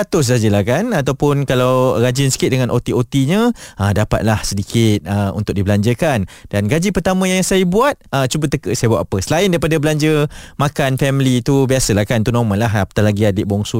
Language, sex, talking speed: Malay, male, 180 wpm